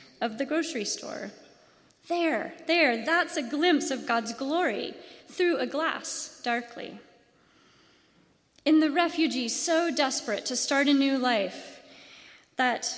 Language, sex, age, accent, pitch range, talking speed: English, female, 30-49, American, 235-300 Hz, 125 wpm